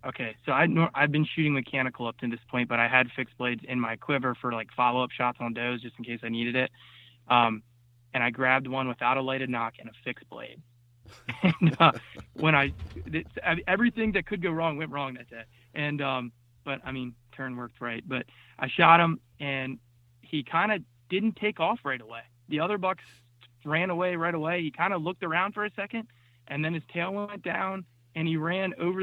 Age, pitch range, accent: 20-39, 120-165 Hz, American